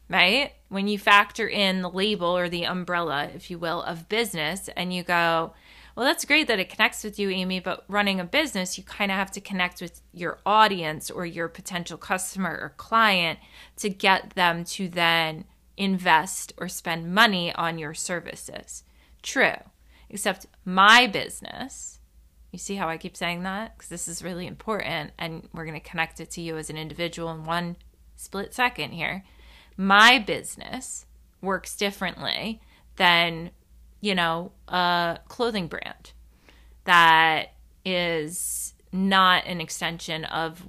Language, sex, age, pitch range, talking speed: English, female, 20-39, 165-190 Hz, 155 wpm